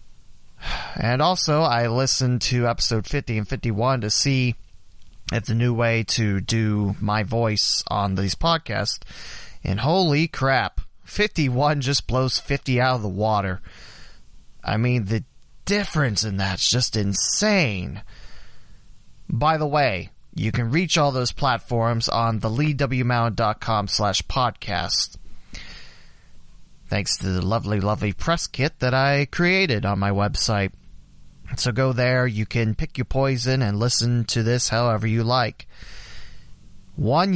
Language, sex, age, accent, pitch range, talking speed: English, male, 30-49, American, 105-130 Hz, 135 wpm